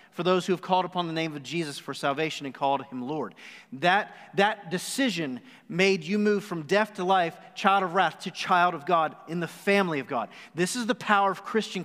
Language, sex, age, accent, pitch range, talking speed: English, male, 40-59, American, 165-210 Hz, 225 wpm